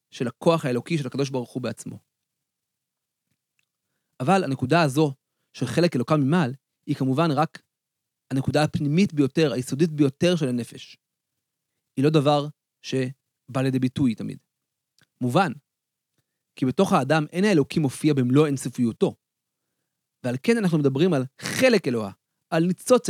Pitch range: 130-175 Hz